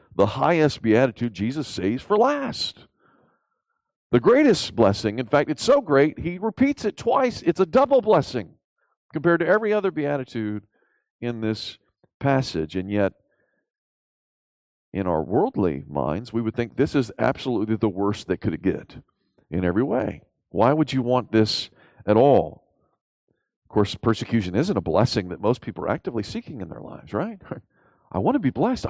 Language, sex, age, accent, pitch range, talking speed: English, male, 40-59, American, 100-145 Hz, 165 wpm